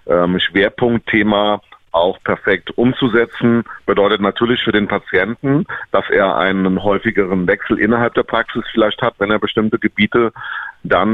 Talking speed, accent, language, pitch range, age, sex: 130 wpm, German, German, 95-115 Hz, 40-59, male